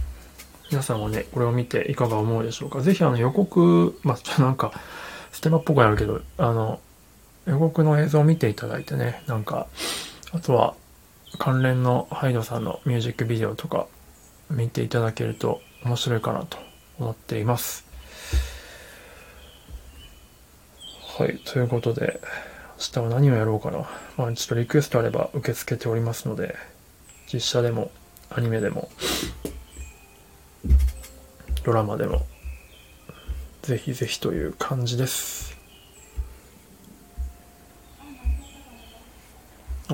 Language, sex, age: Japanese, male, 20-39